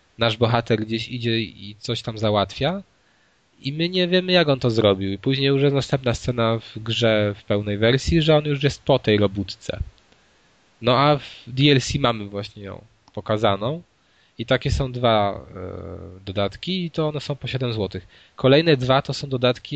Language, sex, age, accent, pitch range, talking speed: Polish, male, 20-39, native, 110-135 Hz, 180 wpm